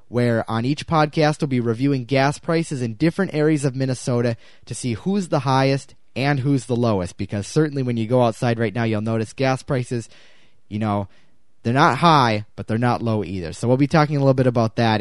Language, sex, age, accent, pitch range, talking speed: English, male, 20-39, American, 115-150 Hz, 215 wpm